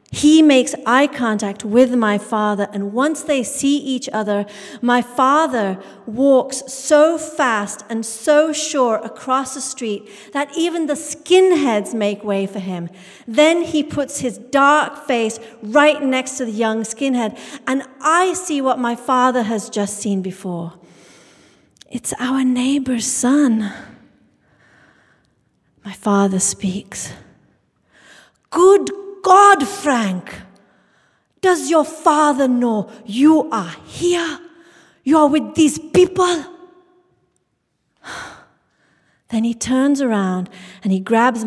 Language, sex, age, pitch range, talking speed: English, female, 40-59, 210-295 Hz, 120 wpm